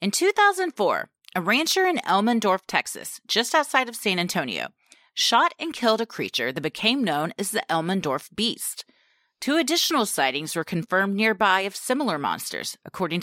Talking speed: 155 wpm